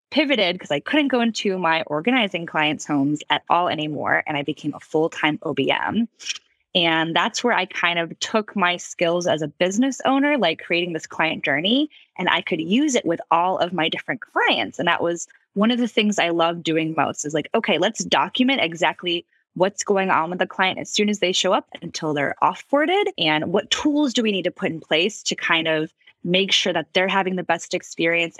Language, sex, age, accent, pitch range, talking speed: English, female, 20-39, American, 160-225 Hz, 215 wpm